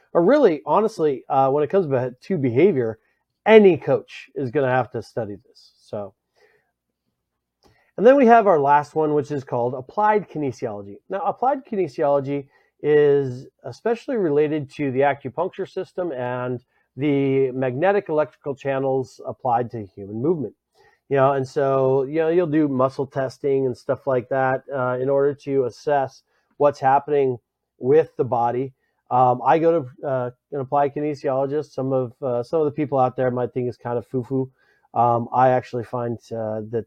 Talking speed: 165 wpm